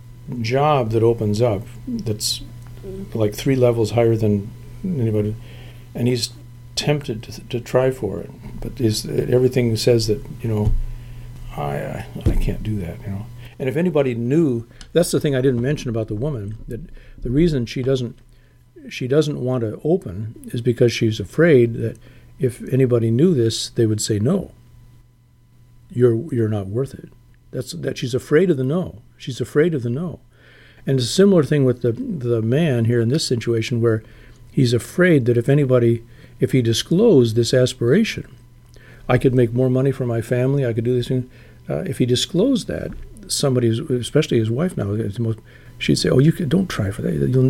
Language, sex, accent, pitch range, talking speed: English, male, American, 115-135 Hz, 185 wpm